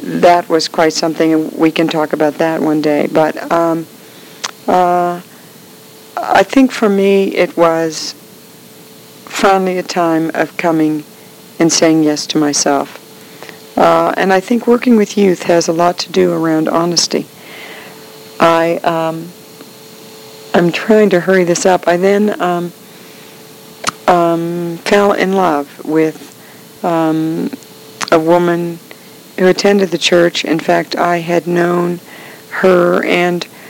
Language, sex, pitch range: English, female, 165-185 Hz